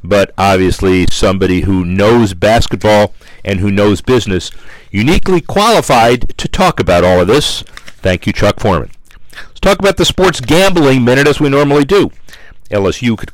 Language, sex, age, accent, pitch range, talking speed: English, male, 50-69, American, 100-130 Hz, 160 wpm